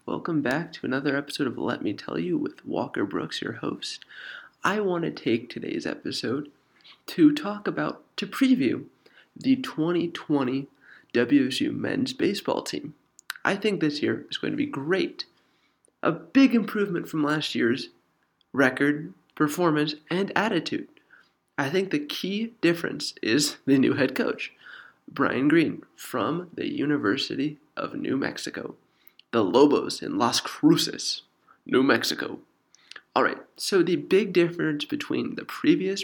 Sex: male